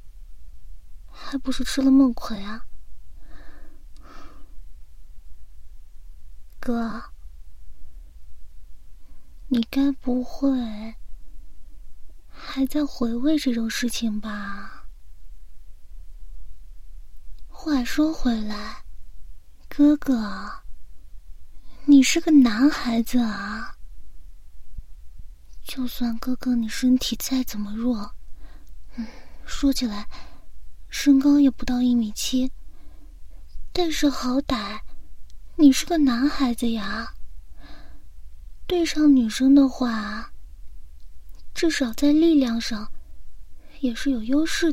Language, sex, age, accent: Chinese, female, 30-49, native